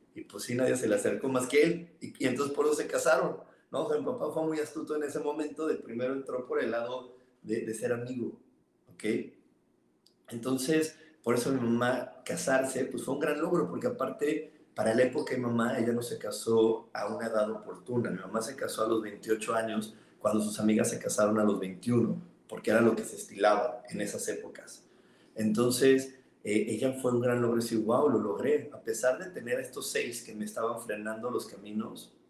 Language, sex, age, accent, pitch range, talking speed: Spanish, male, 40-59, Mexican, 110-160 Hz, 210 wpm